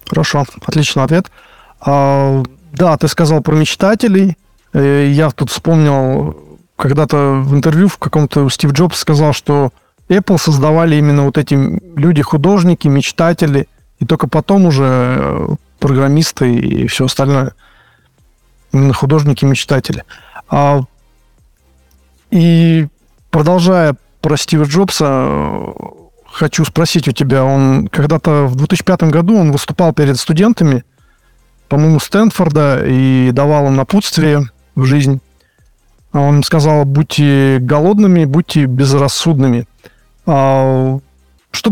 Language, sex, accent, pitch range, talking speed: Russian, male, native, 130-160 Hz, 105 wpm